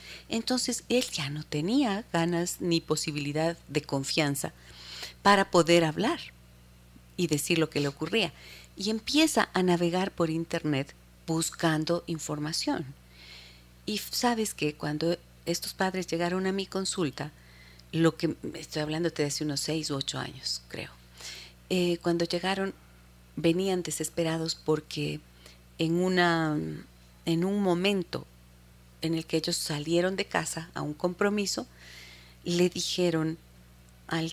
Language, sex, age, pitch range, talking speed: Spanish, female, 40-59, 135-185 Hz, 130 wpm